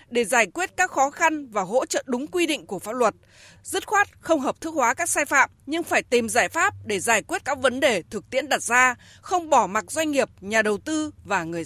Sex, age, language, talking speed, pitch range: female, 20-39, Vietnamese, 250 wpm, 225-325 Hz